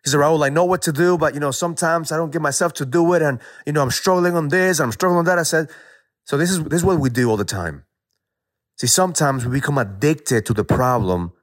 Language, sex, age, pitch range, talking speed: English, male, 30-49, 100-155 Hz, 275 wpm